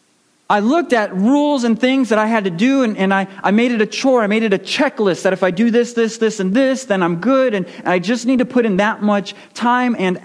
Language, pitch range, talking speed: English, 170-240 Hz, 275 wpm